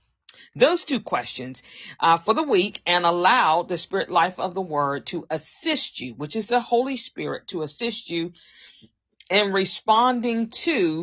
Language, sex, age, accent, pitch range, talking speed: English, female, 40-59, American, 155-240 Hz, 160 wpm